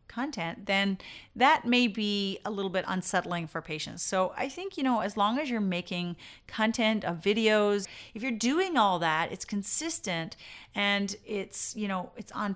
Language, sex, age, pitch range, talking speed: English, female, 30-49, 170-220 Hz, 175 wpm